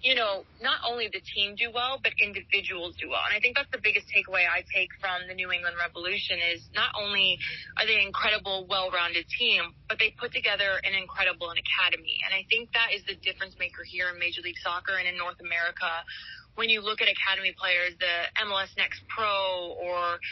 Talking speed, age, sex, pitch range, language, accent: 205 wpm, 20-39, female, 185-220 Hz, English, American